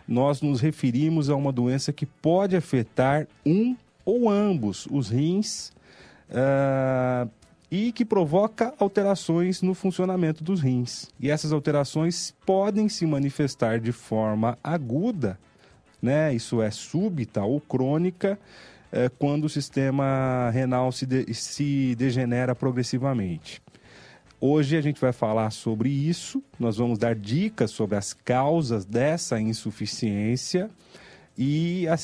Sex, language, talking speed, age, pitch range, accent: male, Portuguese, 120 wpm, 30-49, 115-155 Hz, Brazilian